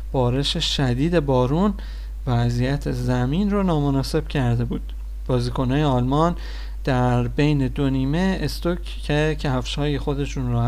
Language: Persian